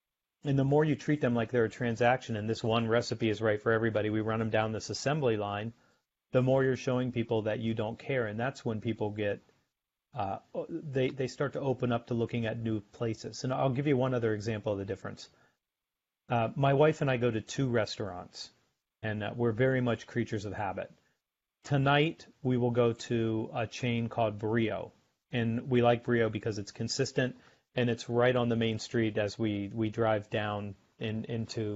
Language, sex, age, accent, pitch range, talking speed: English, male, 40-59, American, 110-130 Hz, 205 wpm